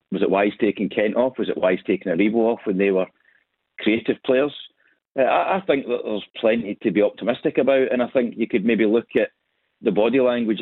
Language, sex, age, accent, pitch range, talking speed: English, male, 40-59, British, 105-130 Hz, 220 wpm